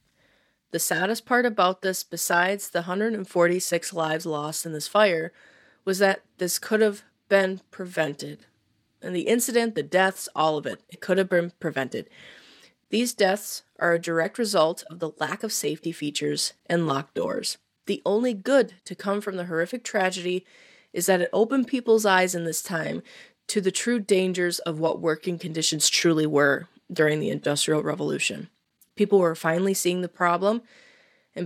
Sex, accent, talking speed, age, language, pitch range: female, American, 165 wpm, 30-49, English, 160-205 Hz